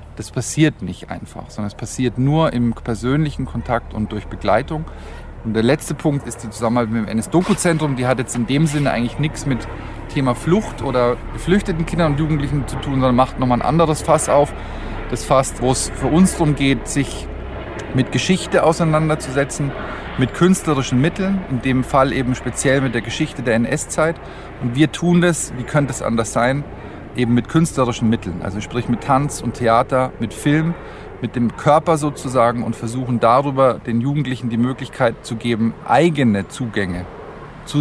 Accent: German